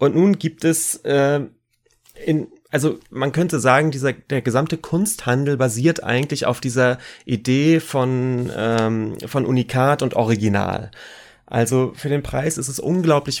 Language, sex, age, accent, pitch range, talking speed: German, male, 30-49, German, 115-145 Hz, 145 wpm